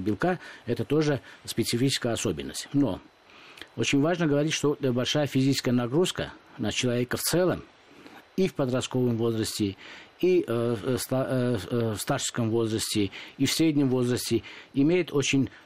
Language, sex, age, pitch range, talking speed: Russian, male, 50-69, 115-140 Hz, 125 wpm